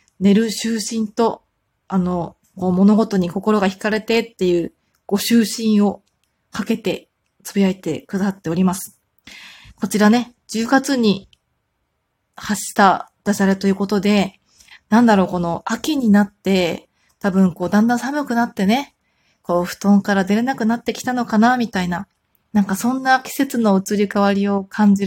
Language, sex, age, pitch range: Japanese, female, 20-39, 190-225 Hz